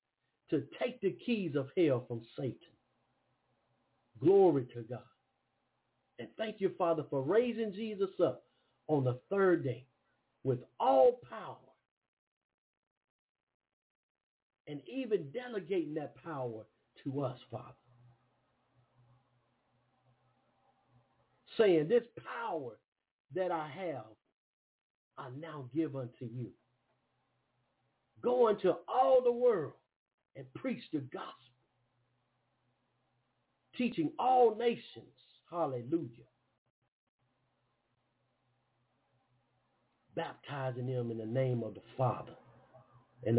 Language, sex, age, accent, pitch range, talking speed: English, male, 50-69, American, 125-180 Hz, 95 wpm